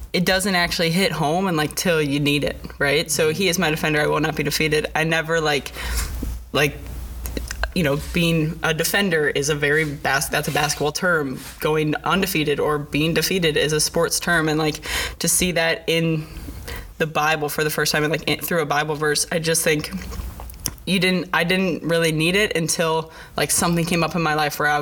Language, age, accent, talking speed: English, 20-39, American, 205 wpm